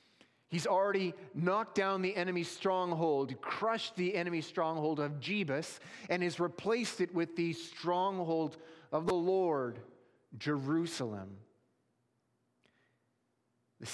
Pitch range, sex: 120-165 Hz, male